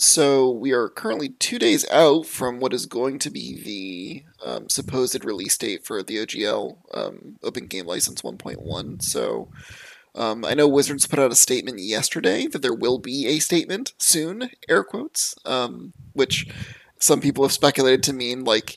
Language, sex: English, male